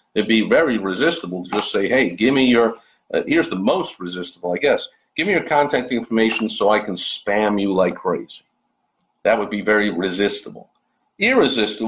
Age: 50-69